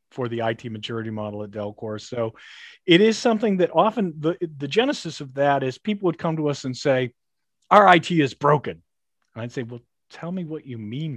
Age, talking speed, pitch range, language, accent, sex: 40-59, 210 wpm, 130-175 Hz, English, American, male